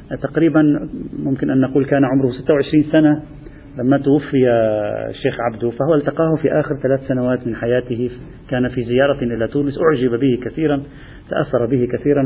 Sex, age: male, 40-59